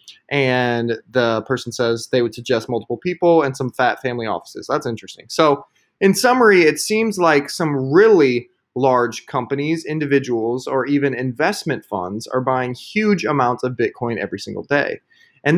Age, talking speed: 20-39, 160 wpm